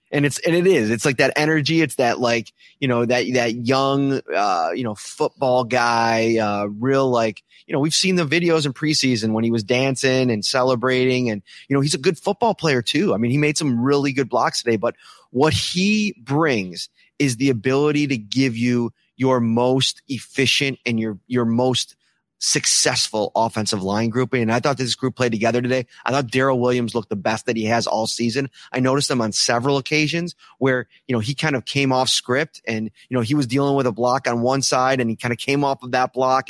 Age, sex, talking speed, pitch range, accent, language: 30-49, male, 220 wpm, 115-140 Hz, American, English